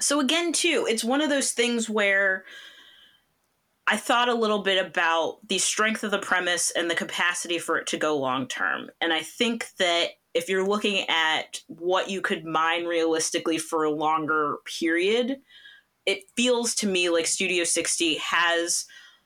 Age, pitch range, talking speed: 20-39, 160-200 Hz, 170 wpm